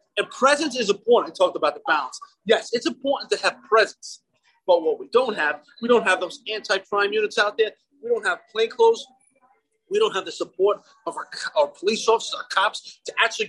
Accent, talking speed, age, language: American, 210 wpm, 30-49, English